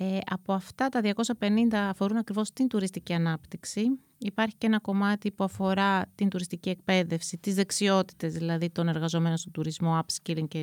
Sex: female